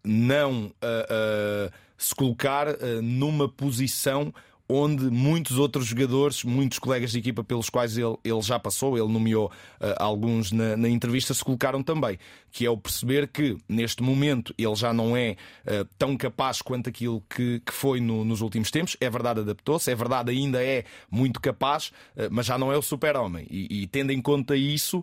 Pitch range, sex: 115-140 Hz, male